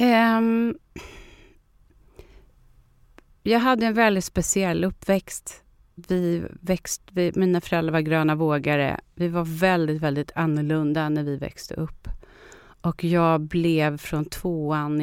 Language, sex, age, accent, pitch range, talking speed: Swedish, female, 30-49, native, 155-190 Hz, 110 wpm